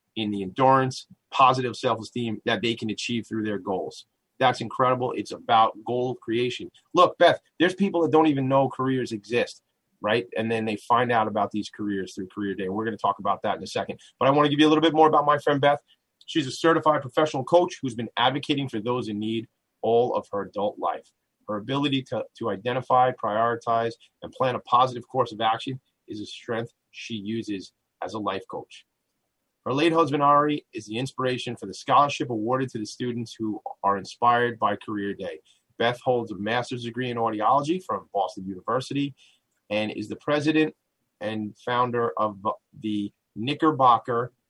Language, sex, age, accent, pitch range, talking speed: English, male, 30-49, American, 110-145 Hz, 190 wpm